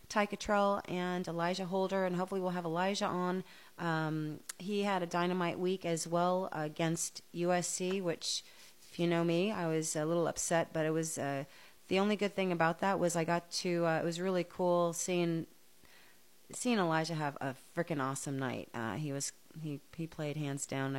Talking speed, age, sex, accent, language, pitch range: 190 wpm, 30-49, female, American, English, 145-180 Hz